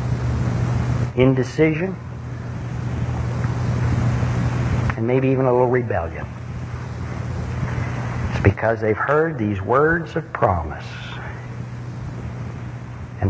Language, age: English, 50-69